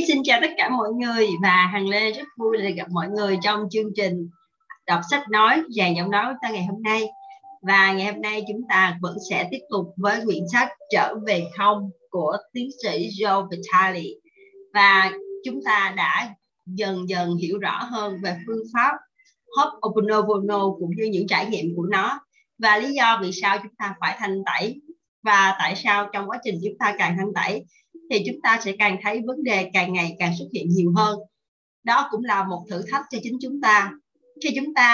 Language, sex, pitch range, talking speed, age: Vietnamese, female, 195-260 Hz, 205 wpm, 20-39